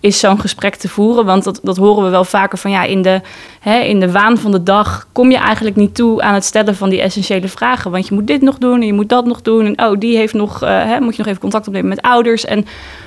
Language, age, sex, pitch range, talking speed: Dutch, 20-39, female, 190-230 Hz, 270 wpm